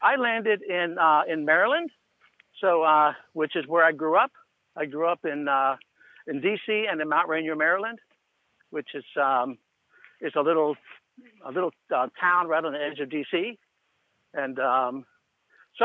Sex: male